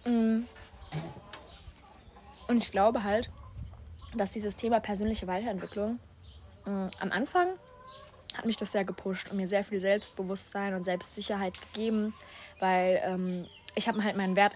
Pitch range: 195-230 Hz